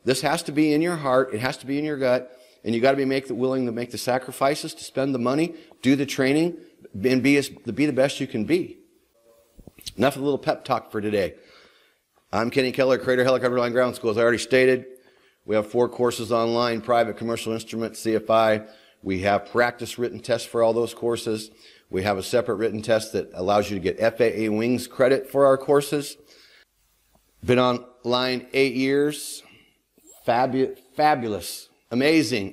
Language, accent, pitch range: English, American, 110-135 Hz